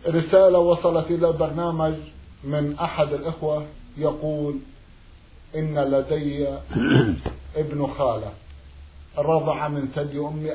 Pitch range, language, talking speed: 130-150 Hz, Arabic, 90 wpm